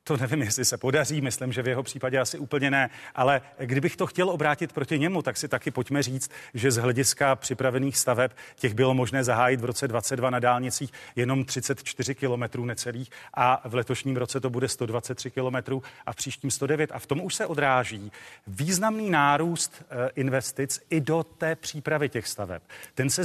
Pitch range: 125-145 Hz